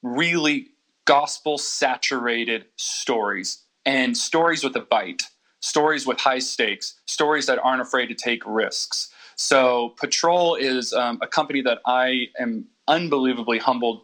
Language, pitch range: English, 120-140 Hz